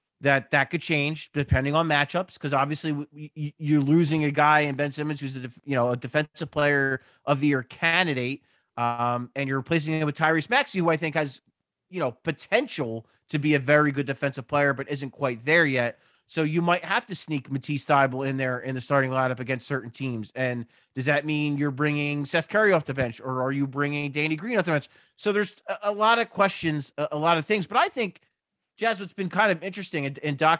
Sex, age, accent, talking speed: male, 30-49, American, 220 wpm